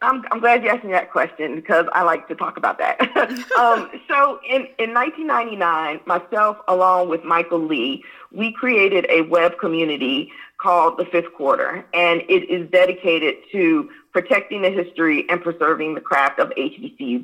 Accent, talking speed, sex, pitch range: American, 165 wpm, female, 165-225 Hz